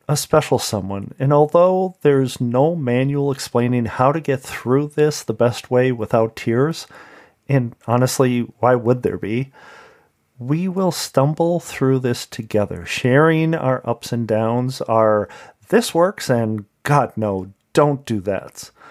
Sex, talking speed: male, 145 wpm